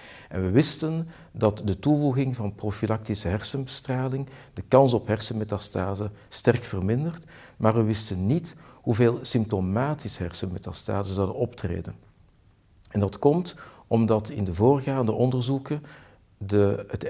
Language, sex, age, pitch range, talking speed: Dutch, male, 50-69, 100-125 Hz, 115 wpm